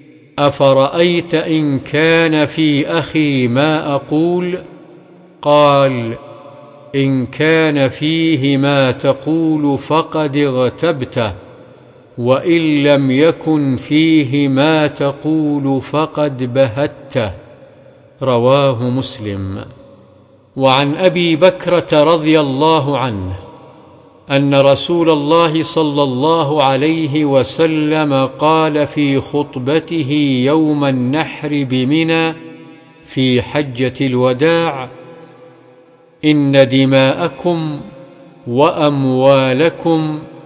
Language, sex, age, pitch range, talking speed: Arabic, male, 50-69, 135-160 Hz, 75 wpm